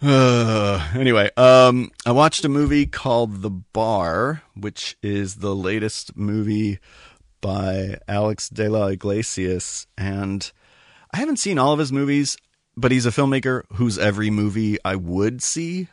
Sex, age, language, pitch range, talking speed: male, 40-59, English, 95-120 Hz, 145 wpm